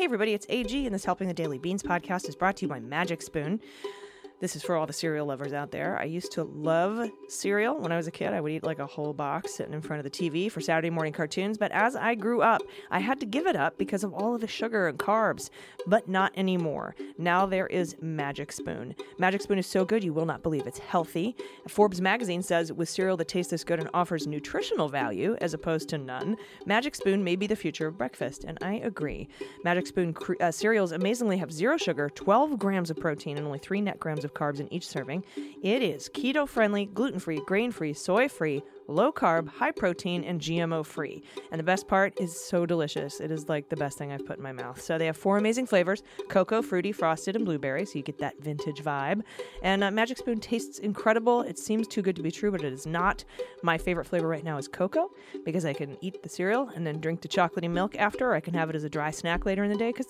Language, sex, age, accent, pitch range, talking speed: English, female, 30-49, American, 160-215 Hz, 240 wpm